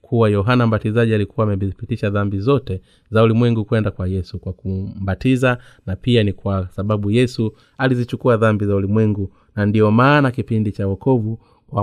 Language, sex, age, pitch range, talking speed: Swahili, male, 30-49, 100-120 Hz, 155 wpm